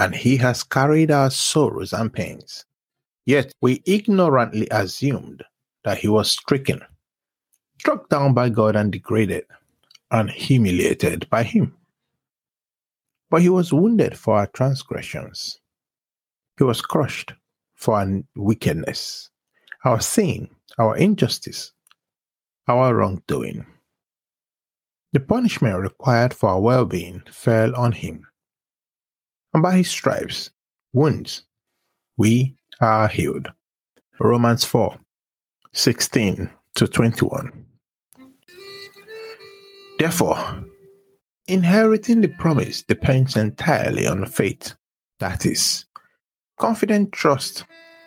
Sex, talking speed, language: male, 100 wpm, English